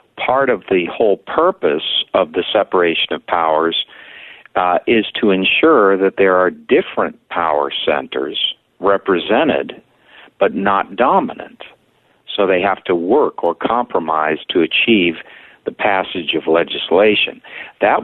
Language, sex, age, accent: English, male, 60-79, American